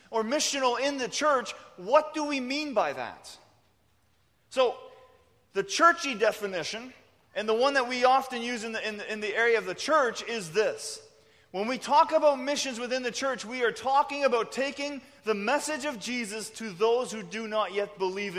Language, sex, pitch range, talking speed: English, male, 220-280 Hz, 180 wpm